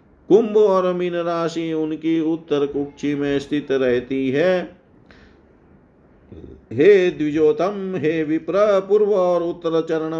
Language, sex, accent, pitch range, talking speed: Hindi, male, native, 135-160 Hz, 105 wpm